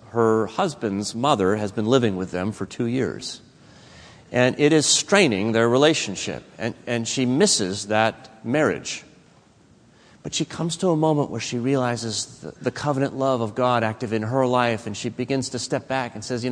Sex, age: male, 40-59